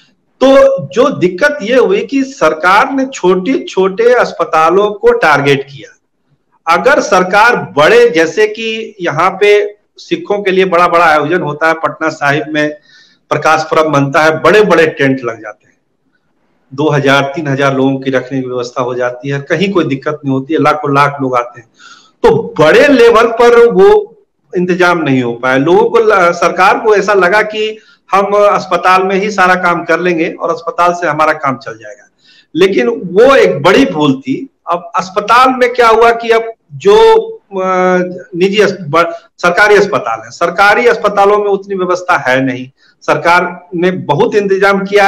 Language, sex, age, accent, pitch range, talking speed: Hindi, male, 50-69, native, 150-220 Hz, 165 wpm